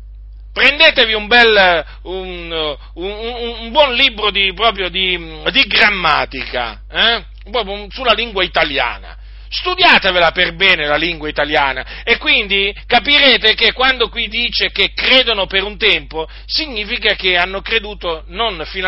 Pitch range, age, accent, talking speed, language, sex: 150-235 Hz, 40-59, native, 135 wpm, Italian, male